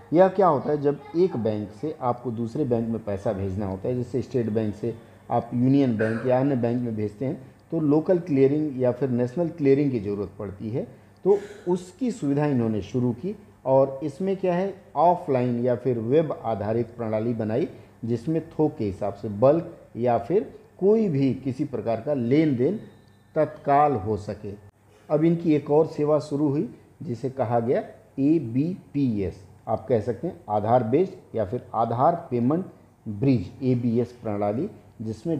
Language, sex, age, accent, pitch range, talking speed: Hindi, male, 50-69, native, 110-150 Hz, 170 wpm